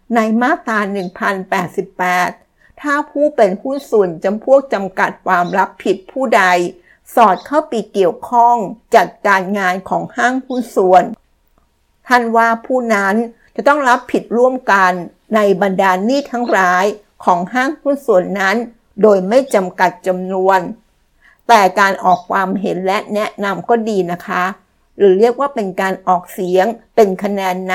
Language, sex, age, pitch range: Thai, female, 60-79, 190-235 Hz